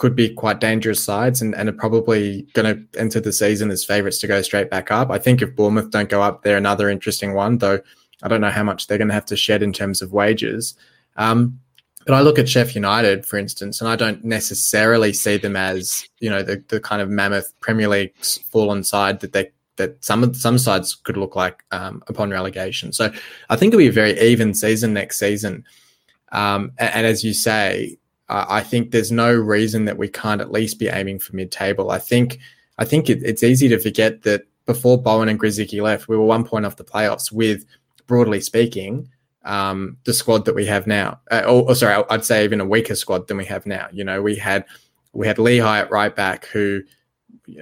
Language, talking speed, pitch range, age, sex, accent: English, 225 wpm, 100-115 Hz, 20-39, male, Australian